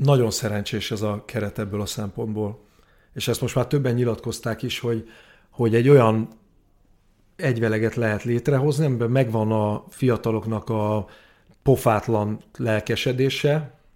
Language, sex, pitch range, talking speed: Hungarian, male, 110-130 Hz, 125 wpm